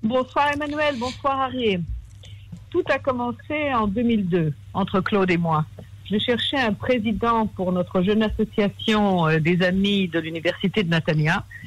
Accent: French